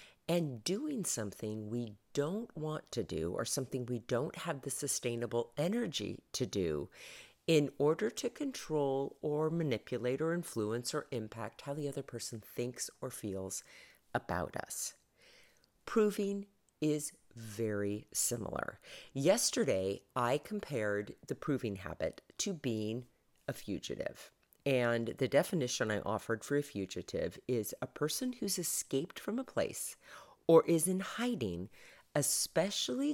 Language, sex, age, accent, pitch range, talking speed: English, female, 40-59, American, 115-190 Hz, 130 wpm